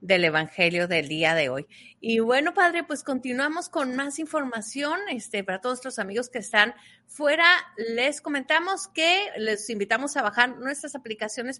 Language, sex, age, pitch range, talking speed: Spanish, female, 30-49, 220-295 Hz, 160 wpm